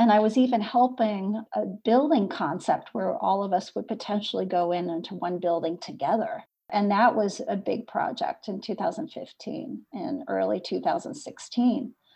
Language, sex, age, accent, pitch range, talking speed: English, female, 40-59, American, 200-250 Hz, 155 wpm